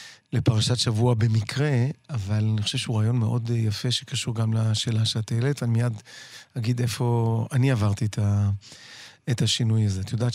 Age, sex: 40-59, male